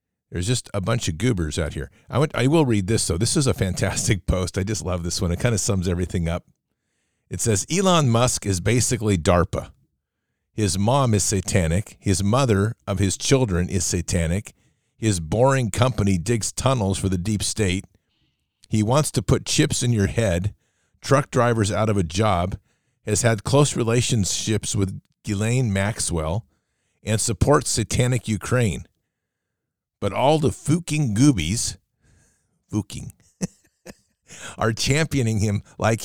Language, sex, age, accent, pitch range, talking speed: English, male, 50-69, American, 95-125 Hz, 155 wpm